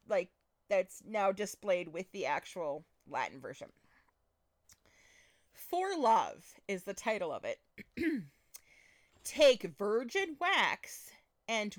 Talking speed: 100 wpm